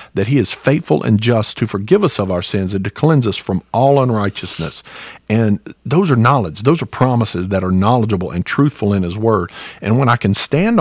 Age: 50-69